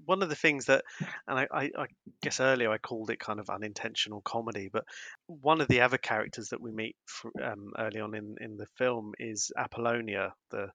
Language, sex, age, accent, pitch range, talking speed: English, male, 20-39, British, 105-125 Hz, 195 wpm